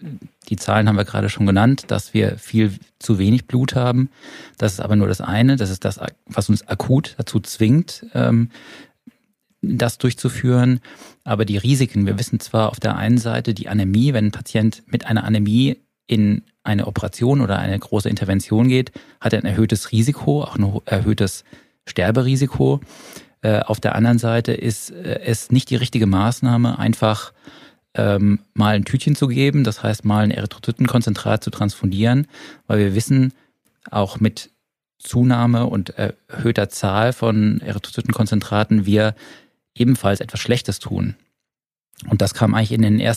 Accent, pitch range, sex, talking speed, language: German, 105-120 Hz, male, 155 wpm, German